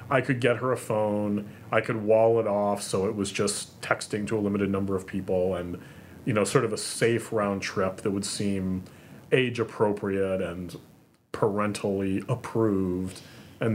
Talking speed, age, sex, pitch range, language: 175 wpm, 30-49, male, 100-135 Hz, English